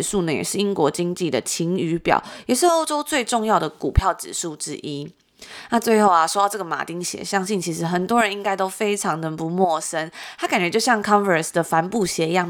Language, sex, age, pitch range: Chinese, female, 20-39, 165-205 Hz